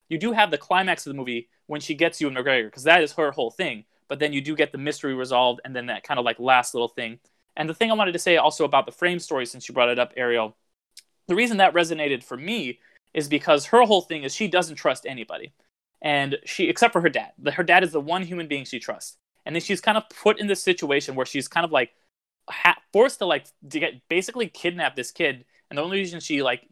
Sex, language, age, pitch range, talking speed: male, English, 20-39, 135-175 Hz, 260 wpm